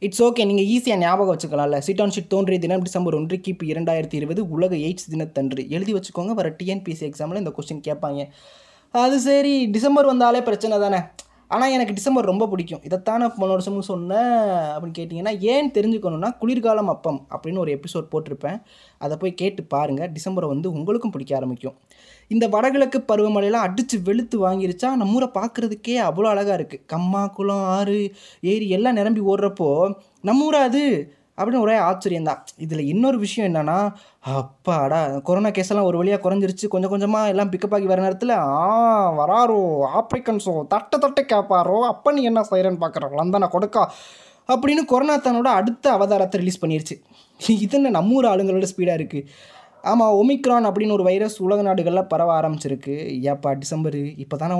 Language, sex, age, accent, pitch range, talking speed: Tamil, male, 20-39, native, 165-220 Hz, 155 wpm